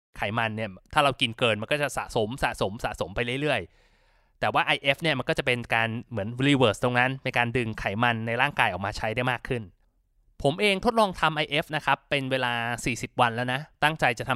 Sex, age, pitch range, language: male, 20-39, 115-150 Hz, Thai